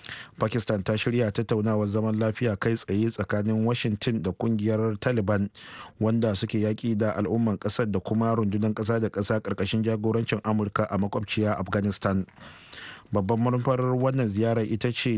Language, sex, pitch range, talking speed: English, male, 105-120 Hz, 135 wpm